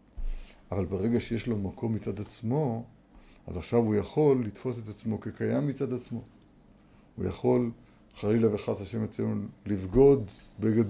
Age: 60-79